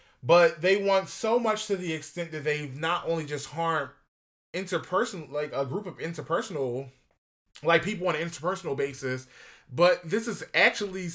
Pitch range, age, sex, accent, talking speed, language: 150-195 Hz, 20-39, male, American, 160 wpm, English